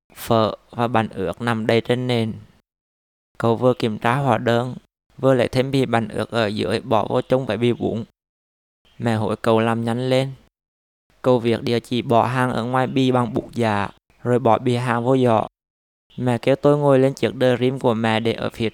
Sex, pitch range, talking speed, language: male, 110-125 Hz, 210 wpm, Vietnamese